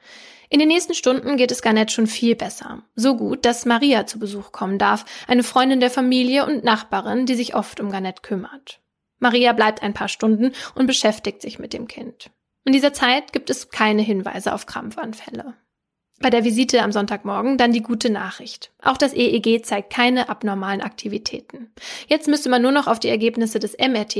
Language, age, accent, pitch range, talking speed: German, 10-29, German, 220-255 Hz, 190 wpm